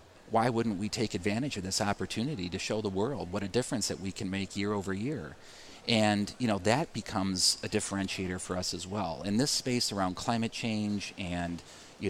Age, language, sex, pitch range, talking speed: 40-59, English, male, 90-110 Hz, 205 wpm